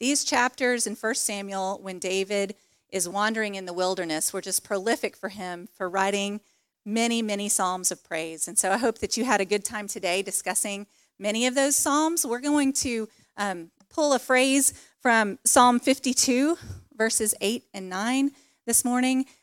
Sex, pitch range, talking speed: female, 200-265 Hz, 175 wpm